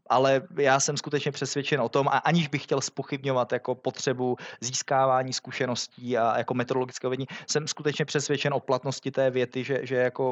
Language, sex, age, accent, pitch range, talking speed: Czech, male, 20-39, native, 125-140 Hz, 175 wpm